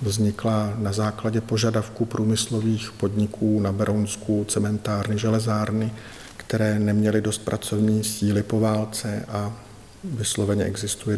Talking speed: 105 wpm